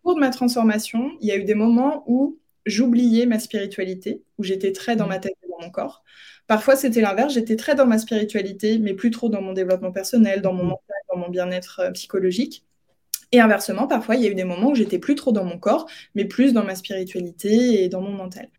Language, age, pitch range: French, 20-39, 195-245 Hz